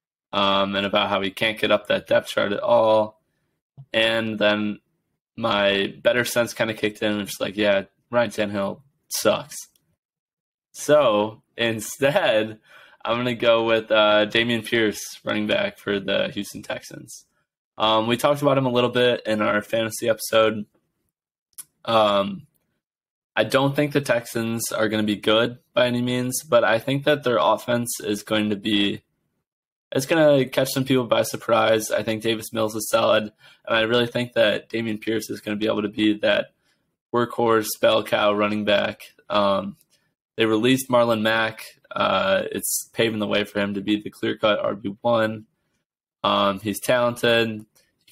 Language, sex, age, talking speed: English, male, 20-39, 170 wpm